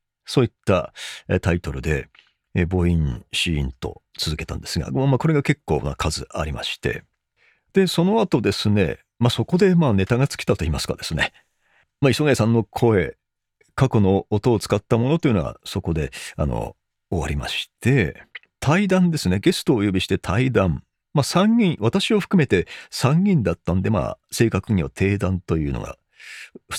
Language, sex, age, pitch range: Japanese, male, 40-59, 90-150 Hz